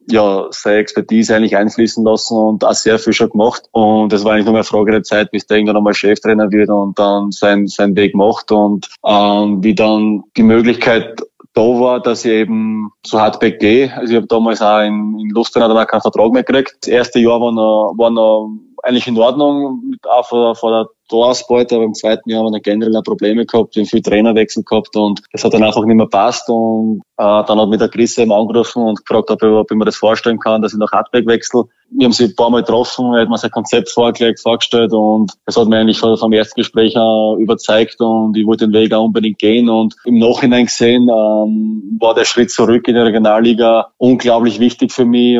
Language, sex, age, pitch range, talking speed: German, male, 20-39, 105-115 Hz, 220 wpm